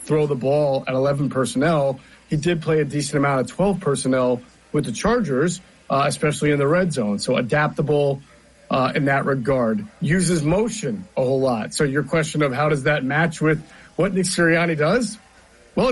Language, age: English, 40-59